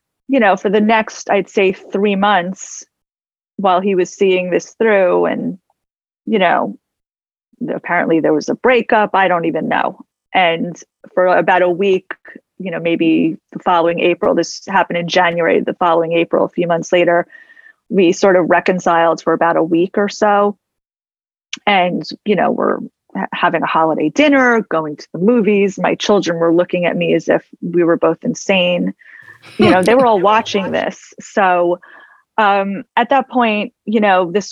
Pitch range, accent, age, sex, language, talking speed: 170-215 Hz, American, 30-49, female, English, 170 wpm